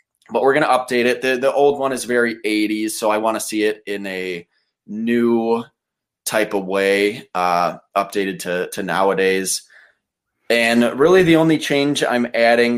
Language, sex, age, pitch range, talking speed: English, male, 20-39, 95-120 Hz, 175 wpm